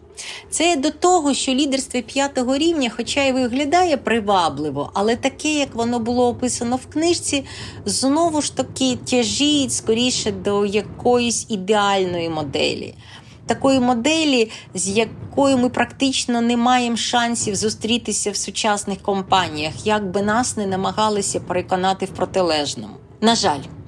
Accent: native